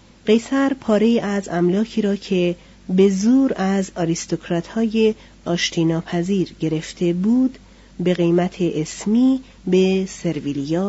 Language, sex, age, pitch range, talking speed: Persian, female, 40-59, 175-225 Hz, 105 wpm